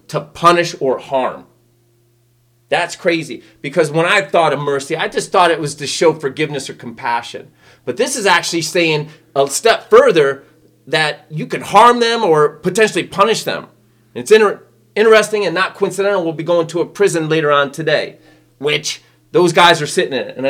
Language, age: English, 30-49